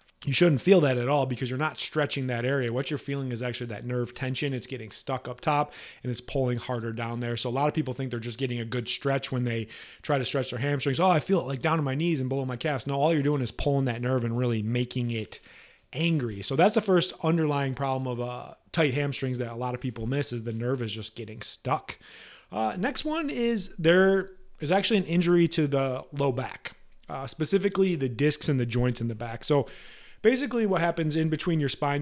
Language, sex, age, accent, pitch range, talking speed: English, male, 30-49, American, 125-155 Hz, 245 wpm